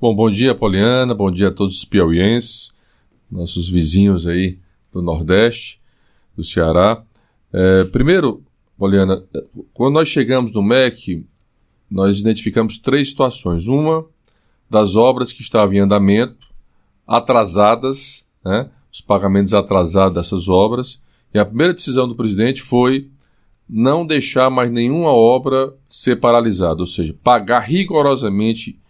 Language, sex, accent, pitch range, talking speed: Portuguese, male, Brazilian, 105-135 Hz, 125 wpm